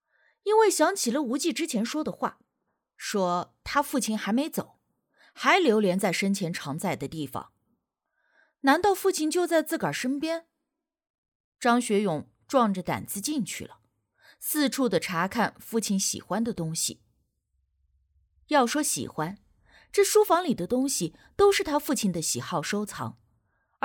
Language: Chinese